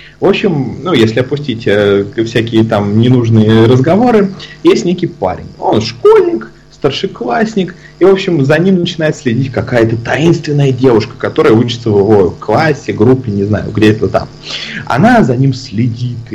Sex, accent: male, native